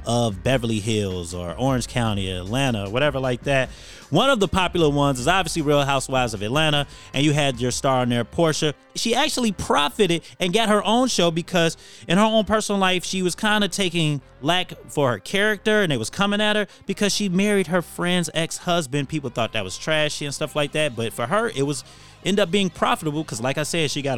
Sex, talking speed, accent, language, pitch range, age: male, 220 wpm, American, English, 130-185 Hz, 30-49